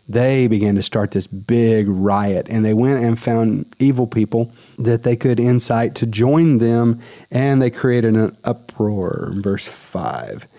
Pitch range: 100-120 Hz